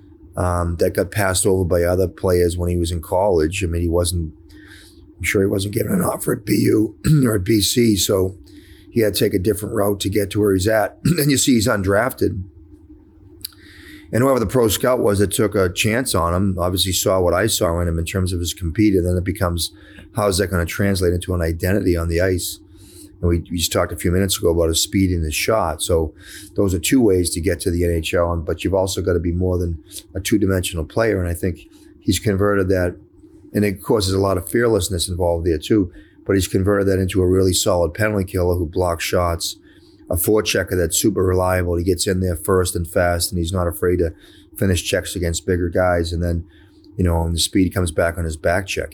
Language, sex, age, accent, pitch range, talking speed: English, male, 30-49, American, 85-100 Hz, 230 wpm